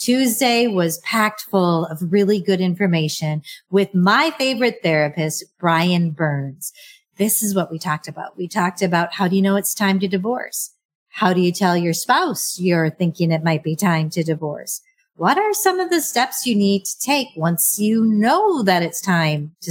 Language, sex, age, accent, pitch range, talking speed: English, female, 40-59, American, 170-220 Hz, 190 wpm